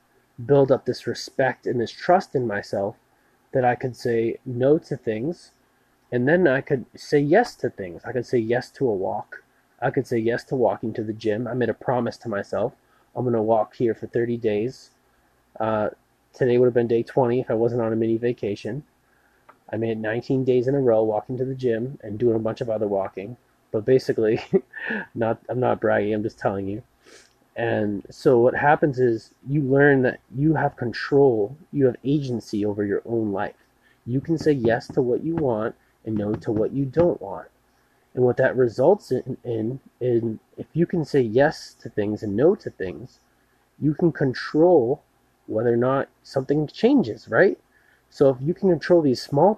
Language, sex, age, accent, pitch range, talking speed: English, male, 20-39, American, 115-140 Hz, 195 wpm